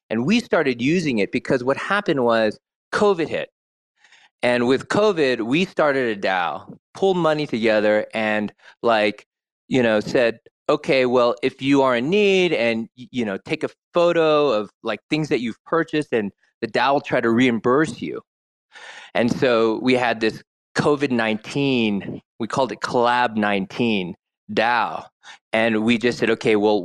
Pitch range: 115-170 Hz